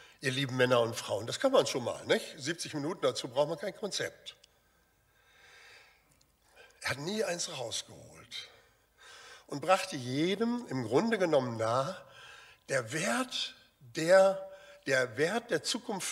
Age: 60-79